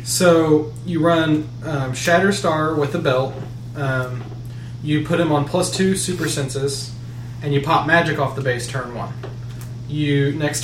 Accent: American